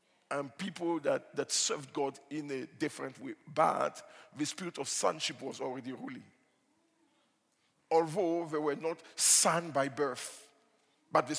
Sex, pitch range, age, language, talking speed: male, 140-170 Hz, 50-69, English, 140 wpm